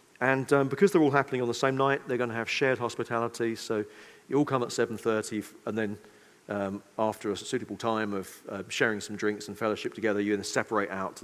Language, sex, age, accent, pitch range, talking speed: English, male, 40-59, British, 105-140 Hz, 230 wpm